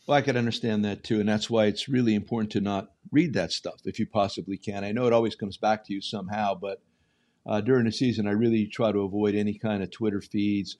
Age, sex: 50-69, male